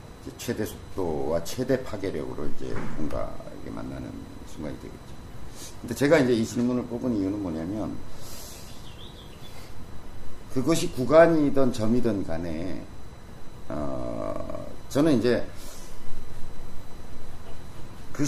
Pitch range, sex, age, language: 95-130 Hz, male, 50-69, Korean